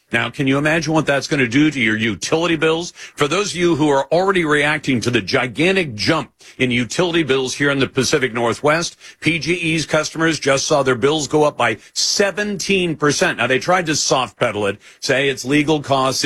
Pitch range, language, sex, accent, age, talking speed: 130-170 Hz, English, male, American, 50-69, 195 wpm